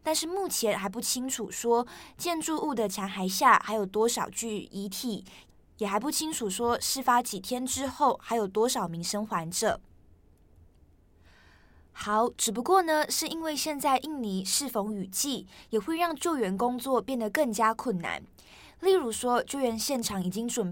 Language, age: Chinese, 20-39